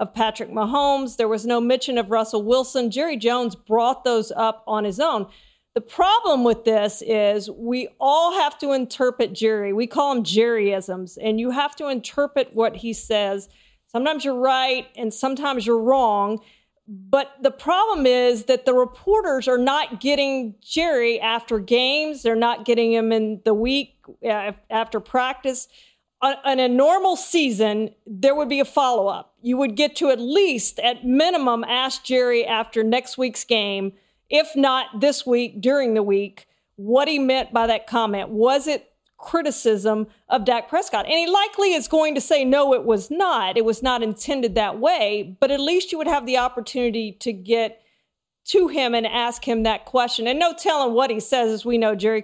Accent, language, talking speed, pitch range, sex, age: American, English, 180 wpm, 225-275 Hz, female, 40-59